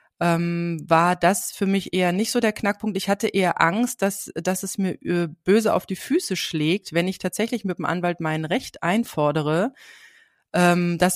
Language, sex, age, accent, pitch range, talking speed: German, female, 30-49, German, 170-220 Hz, 170 wpm